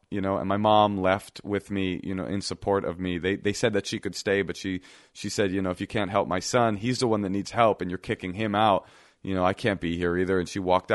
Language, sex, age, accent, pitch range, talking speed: English, male, 30-49, American, 90-105 Hz, 295 wpm